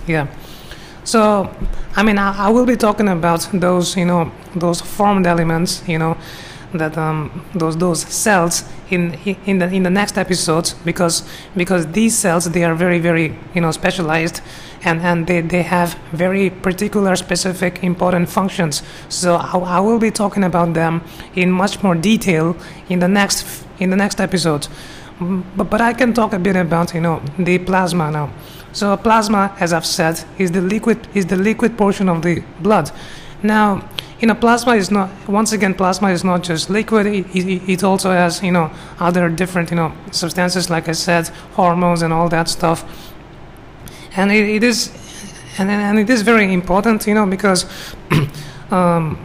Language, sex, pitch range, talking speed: English, male, 170-200 Hz, 175 wpm